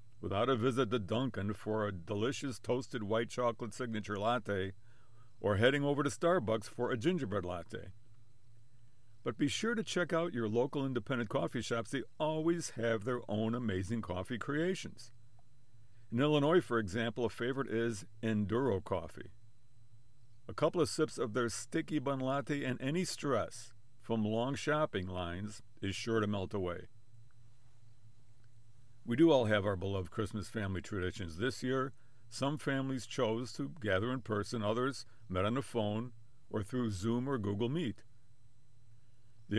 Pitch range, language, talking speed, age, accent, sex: 110-130 Hz, English, 155 wpm, 50-69, American, male